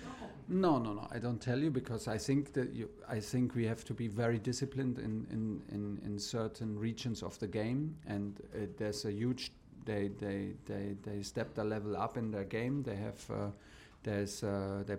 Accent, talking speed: German, 205 wpm